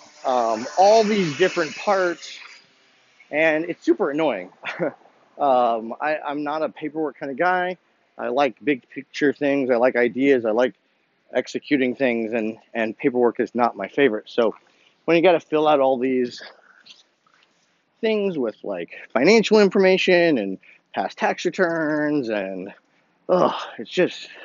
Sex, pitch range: male, 140-185 Hz